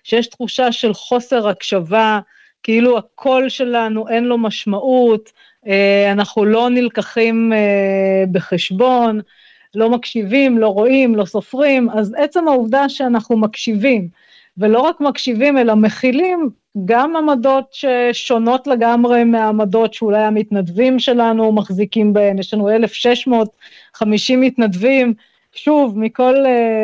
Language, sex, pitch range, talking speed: Hebrew, female, 215-260 Hz, 105 wpm